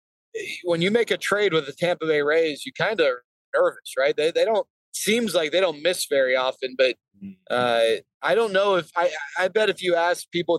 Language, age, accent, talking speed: English, 30-49, American, 220 wpm